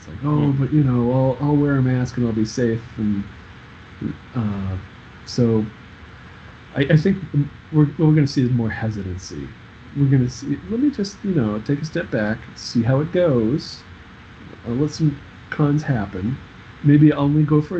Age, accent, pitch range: 40-59, American, 95-130 Hz